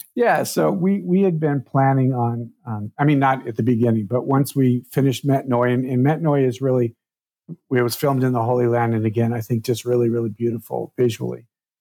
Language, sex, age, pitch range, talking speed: English, male, 50-69, 115-130 Hz, 220 wpm